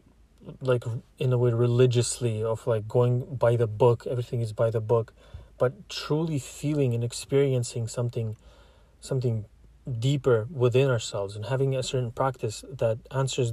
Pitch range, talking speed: 110-130 Hz, 145 wpm